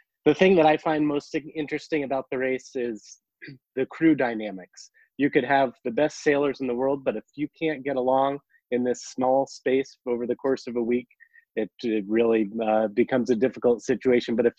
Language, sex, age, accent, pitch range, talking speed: English, male, 30-49, American, 115-140 Hz, 200 wpm